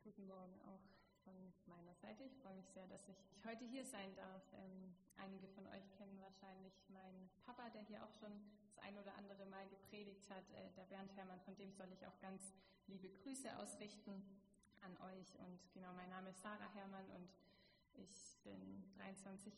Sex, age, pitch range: female, 20-39, 190-210 Hz